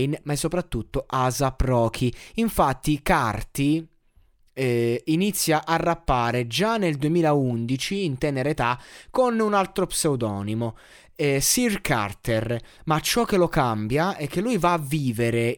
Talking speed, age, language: 135 wpm, 20-39, Italian